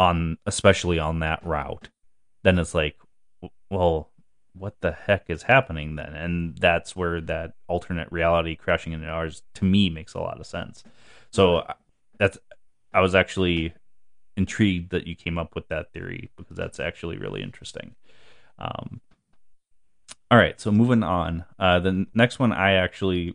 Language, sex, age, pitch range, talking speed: English, male, 30-49, 85-100 Hz, 155 wpm